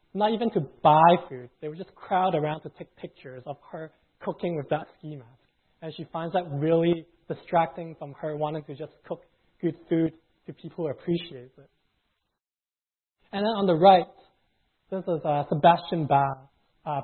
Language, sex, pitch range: English, male, 145-175 Hz